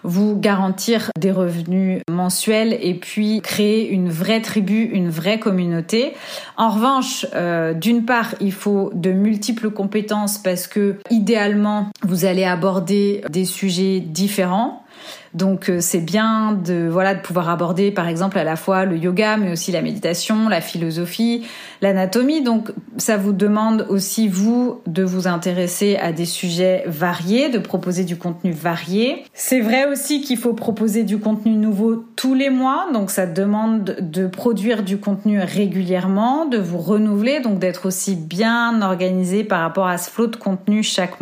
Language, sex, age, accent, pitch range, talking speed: French, female, 30-49, French, 185-225 Hz, 160 wpm